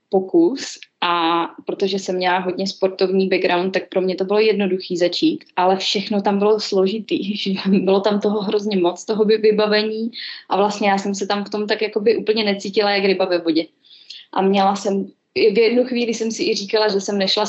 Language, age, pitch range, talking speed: Czech, 20-39, 185-215 Hz, 200 wpm